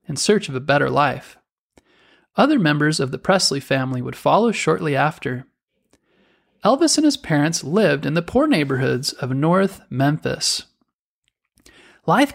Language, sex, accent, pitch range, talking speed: English, male, American, 135-205 Hz, 140 wpm